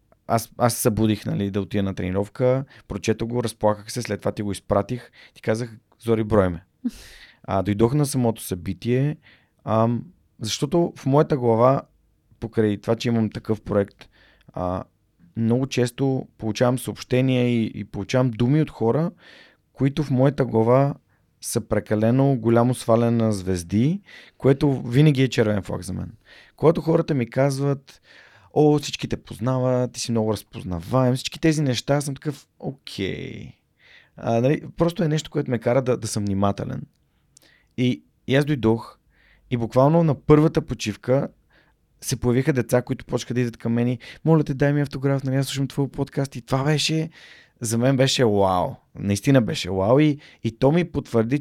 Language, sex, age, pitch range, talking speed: Bulgarian, male, 30-49, 110-135 Hz, 165 wpm